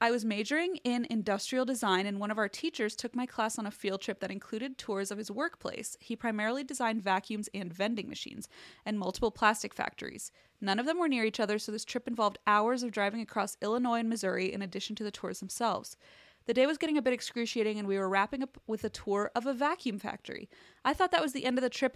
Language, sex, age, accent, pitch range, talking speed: English, female, 20-39, American, 200-245 Hz, 240 wpm